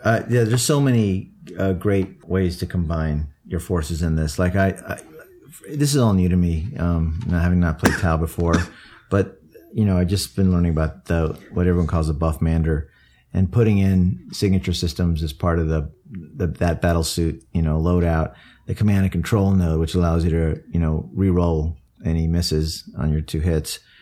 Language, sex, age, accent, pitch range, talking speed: English, male, 40-59, American, 80-95 Hz, 195 wpm